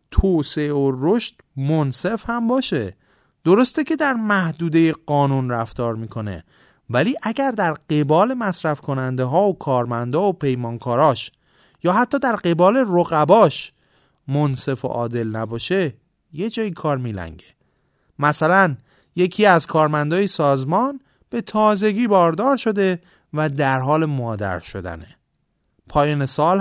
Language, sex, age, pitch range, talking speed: Persian, male, 30-49, 120-185 Hz, 125 wpm